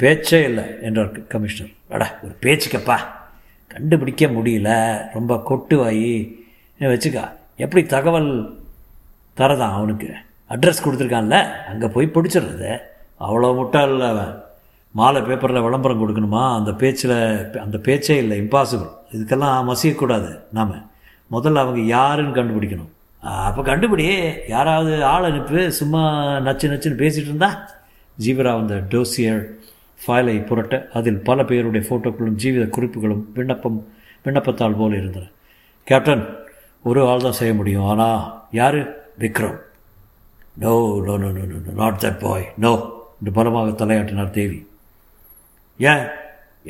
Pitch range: 105-135 Hz